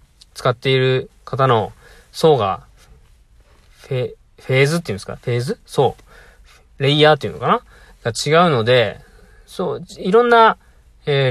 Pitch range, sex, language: 105-155 Hz, male, Japanese